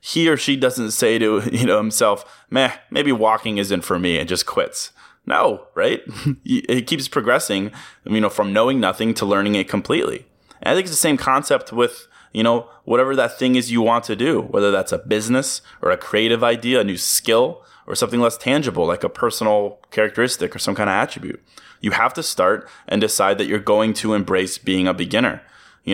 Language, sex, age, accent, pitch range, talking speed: English, male, 20-39, American, 105-125 Hz, 205 wpm